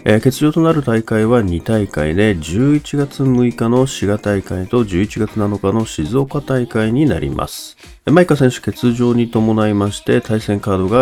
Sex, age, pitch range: male, 40-59, 95-130 Hz